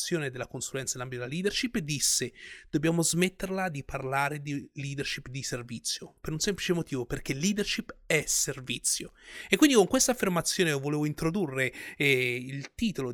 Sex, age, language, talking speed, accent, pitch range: male, 30-49, Italian, 145 wpm, native, 130-165 Hz